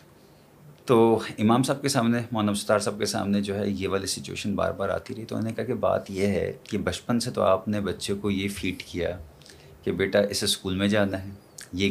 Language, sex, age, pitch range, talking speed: Urdu, male, 30-49, 95-120 Hz, 230 wpm